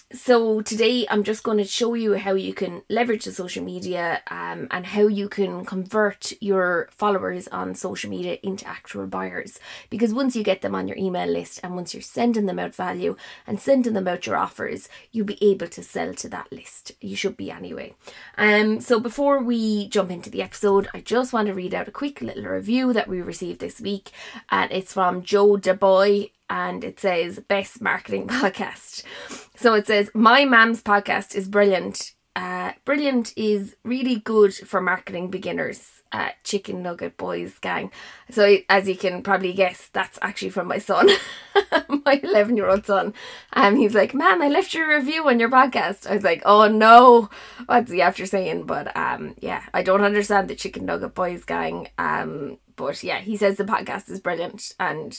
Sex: female